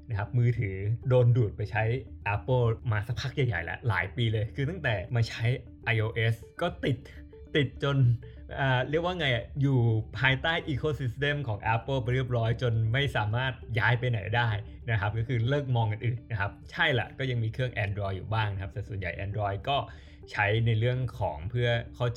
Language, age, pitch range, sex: Thai, 20-39, 105-130 Hz, male